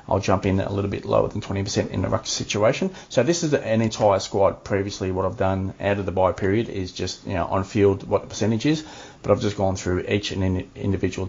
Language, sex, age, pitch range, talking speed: English, male, 30-49, 95-115 Hz, 245 wpm